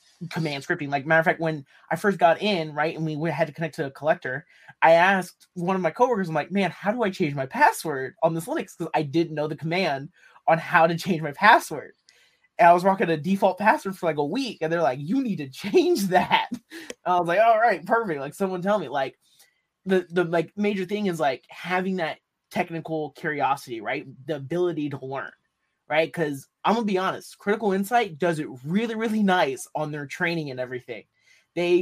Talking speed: 225 wpm